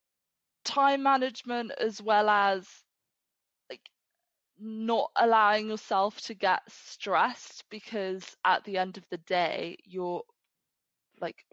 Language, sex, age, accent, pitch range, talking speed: English, female, 20-39, British, 165-200 Hz, 110 wpm